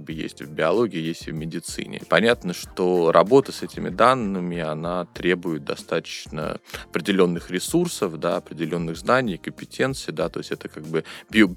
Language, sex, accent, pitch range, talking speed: Russian, male, native, 85-105 Hz, 160 wpm